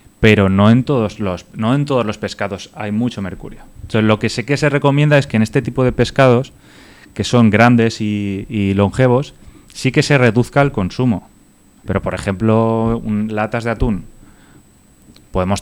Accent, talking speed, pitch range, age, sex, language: Spanish, 180 wpm, 100-120 Hz, 20-39, male, Spanish